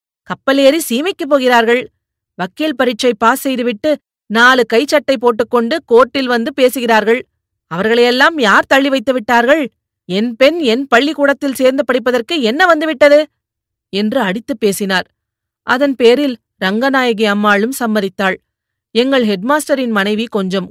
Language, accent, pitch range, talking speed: Tamil, native, 225-295 Hz, 110 wpm